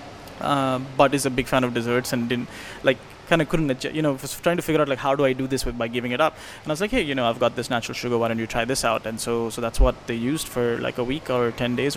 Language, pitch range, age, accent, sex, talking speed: English, 125-150 Hz, 20-39, Indian, male, 320 wpm